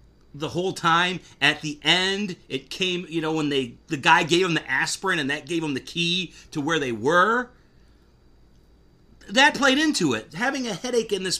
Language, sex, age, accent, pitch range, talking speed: English, male, 40-59, American, 115-190 Hz, 195 wpm